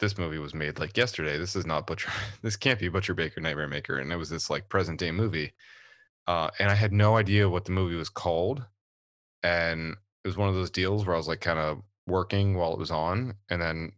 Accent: American